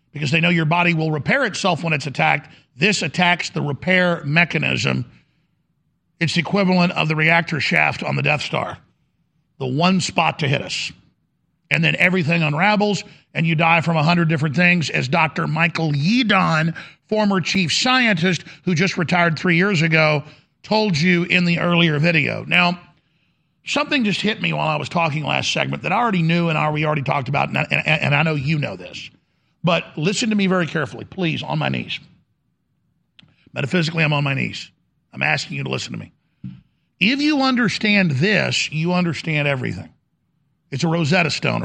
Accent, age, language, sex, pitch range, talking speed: American, 50-69, English, male, 155-190 Hz, 175 wpm